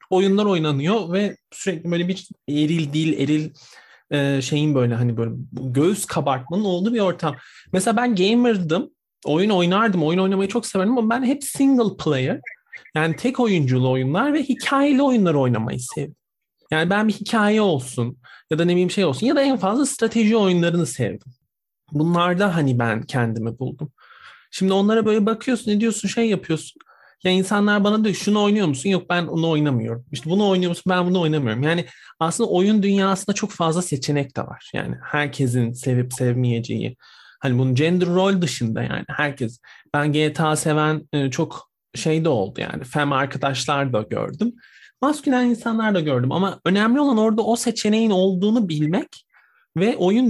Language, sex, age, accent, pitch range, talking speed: Turkish, male, 40-59, native, 145-205 Hz, 160 wpm